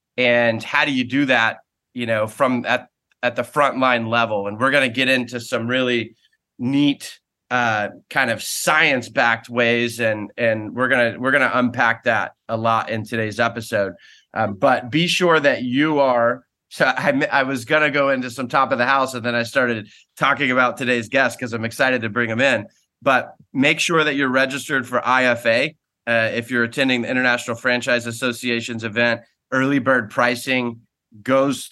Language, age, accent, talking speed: English, 30-49, American, 185 wpm